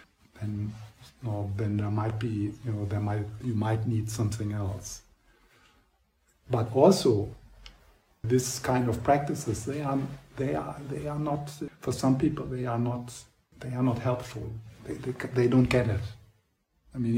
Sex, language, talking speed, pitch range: male, English, 165 wpm, 100-125 Hz